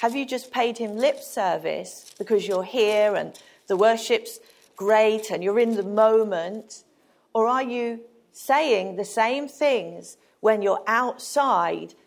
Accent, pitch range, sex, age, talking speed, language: British, 210-285 Hz, female, 40-59, 145 wpm, English